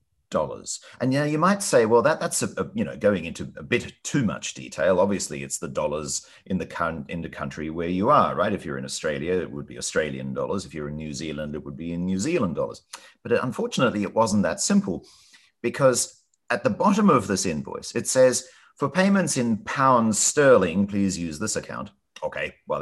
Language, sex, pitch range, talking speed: English, male, 80-130 Hz, 215 wpm